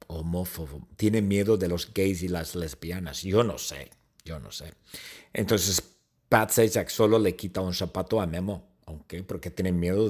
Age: 50-69